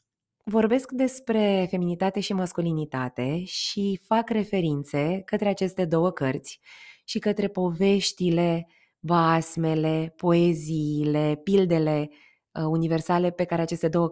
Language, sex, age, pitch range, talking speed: Romanian, female, 20-39, 155-190 Hz, 100 wpm